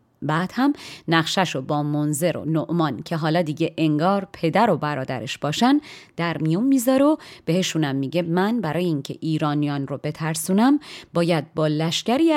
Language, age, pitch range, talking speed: Persian, 30-49, 155-185 Hz, 150 wpm